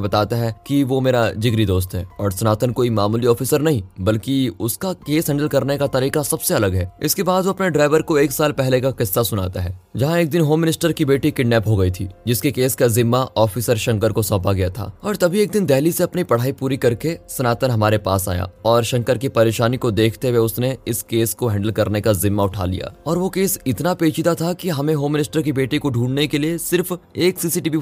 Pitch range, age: 110-150 Hz, 20-39